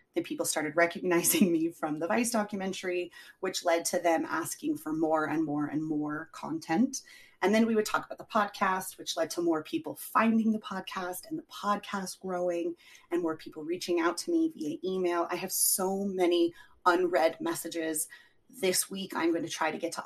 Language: English